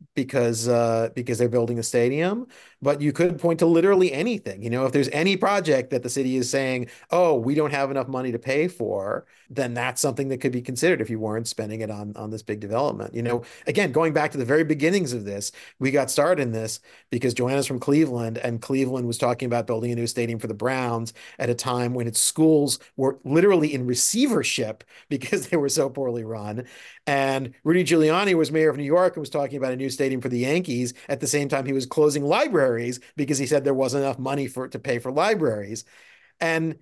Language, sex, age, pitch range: English, male, 40-59, 120-160 Hz